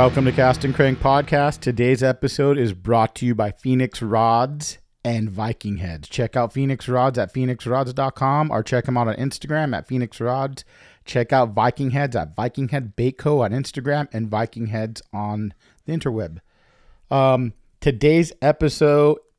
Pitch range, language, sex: 115-135 Hz, English, male